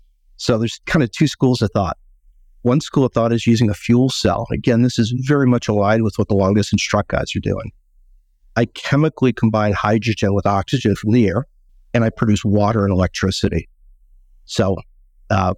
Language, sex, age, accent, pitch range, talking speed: English, male, 50-69, American, 95-120 Hz, 190 wpm